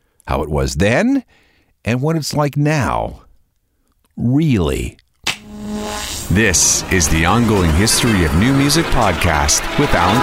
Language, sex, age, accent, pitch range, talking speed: English, male, 50-69, American, 90-145 Hz, 125 wpm